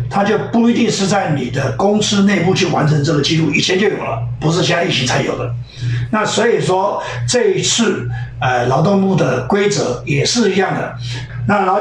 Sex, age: male, 60-79